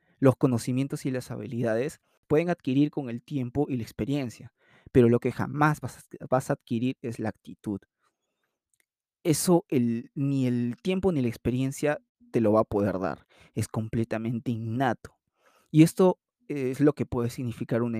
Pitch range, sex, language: 110-135 Hz, male, Spanish